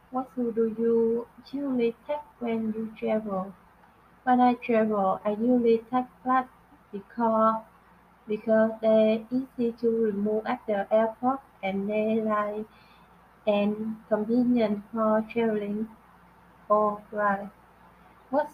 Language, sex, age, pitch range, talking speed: Vietnamese, female, 20-39, 215-235 Hz, 115 wpm